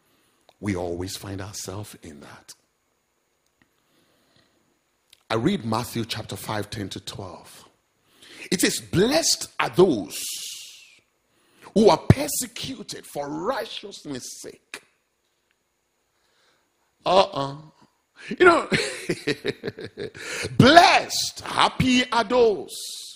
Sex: male